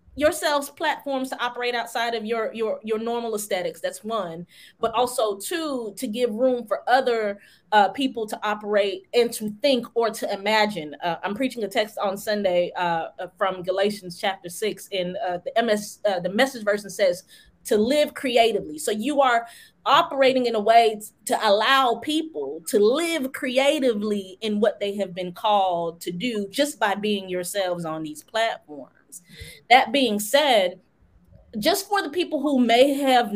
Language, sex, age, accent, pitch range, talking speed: English, female, 20-39, American, 195-265 Hz, 165 wpm